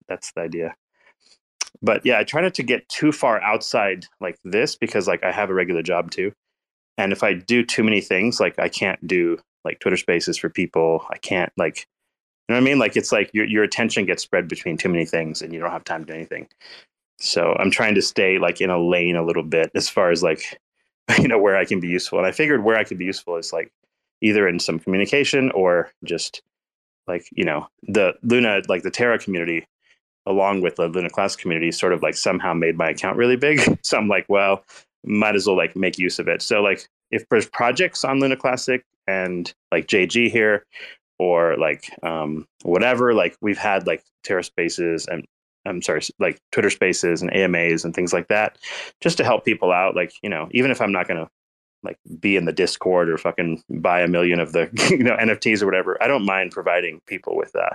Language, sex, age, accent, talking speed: English, male, 30-49, American, 220 wpm